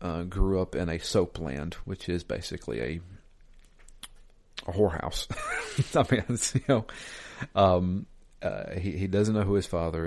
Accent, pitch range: American, 85-95 Hz